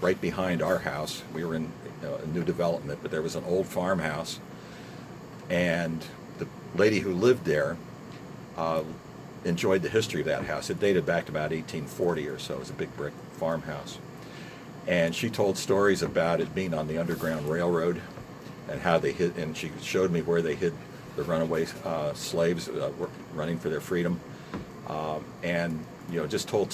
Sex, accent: male, American